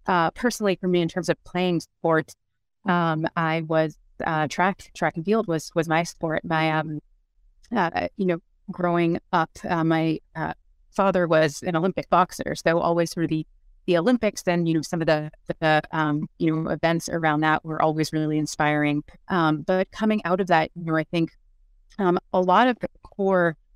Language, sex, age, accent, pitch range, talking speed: English, female, 30-49, American, 155-175 Hz, 190 wpm